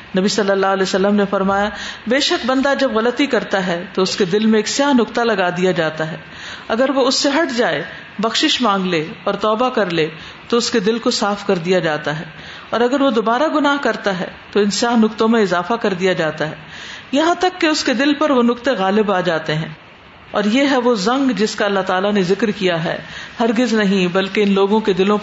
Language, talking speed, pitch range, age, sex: Urdu, 235 wpm, 185-230 Hz, 50-69, female